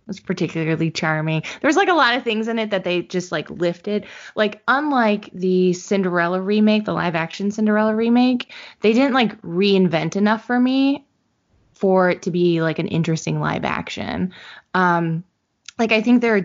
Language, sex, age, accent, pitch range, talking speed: English, female, 20-39, American, 170-215 Hz, 175 wpm